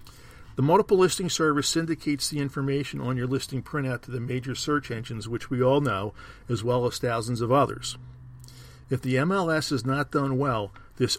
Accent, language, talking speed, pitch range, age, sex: American, English, 180 wpm, 120-150 Hz, 50-69, male